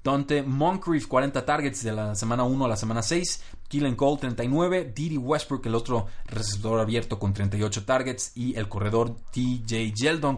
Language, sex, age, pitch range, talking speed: Spanish, male, 20-39, 105-125 Hz, 170 wpm